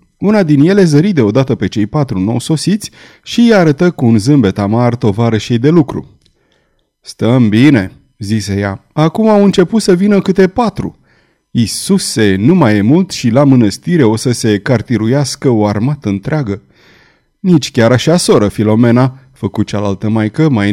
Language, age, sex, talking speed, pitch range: Romanian, 30-49, male, 160 wpm, 110-160 Hz